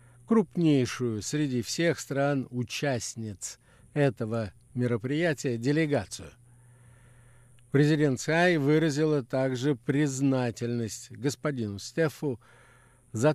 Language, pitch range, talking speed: Russian, 120-145 Hz, 70 wpm